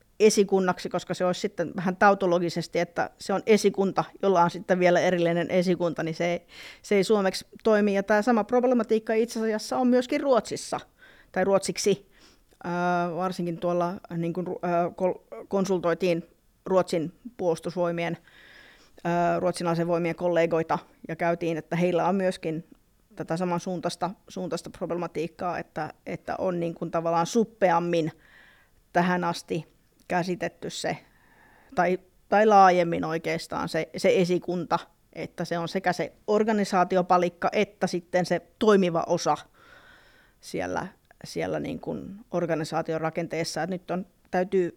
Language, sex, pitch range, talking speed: Finnish, female, 170-195 Hz, 115 wpm